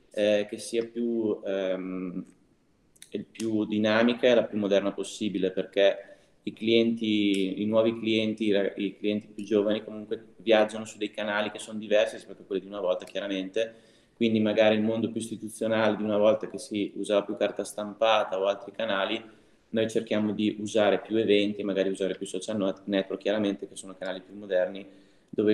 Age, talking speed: 20-39, 175 wpm